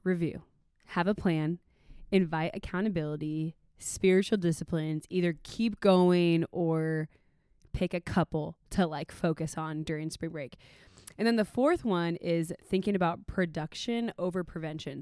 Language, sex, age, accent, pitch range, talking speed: English, female, 20-39, American, 160-195 Hz, 130 wpm